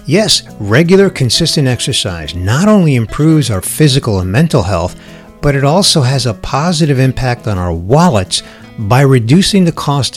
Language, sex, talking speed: English, male, 155 wpm